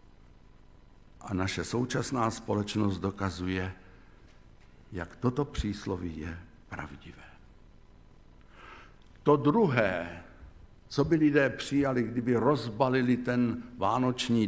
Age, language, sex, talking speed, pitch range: 60-79, Slovak, male, 85 wpm, 90-120 Hz